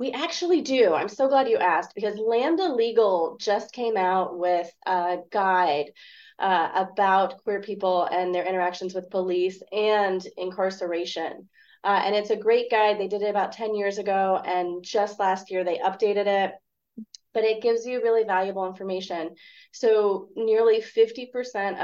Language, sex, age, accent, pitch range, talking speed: English, female, 30-49, American, 180-220 Hz, 160 wpm